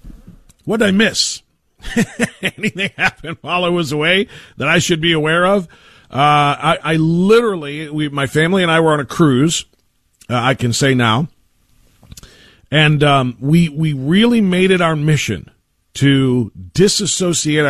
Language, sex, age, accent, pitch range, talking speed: English, male, 40-59, American, 120-150 Hz, 155 wpm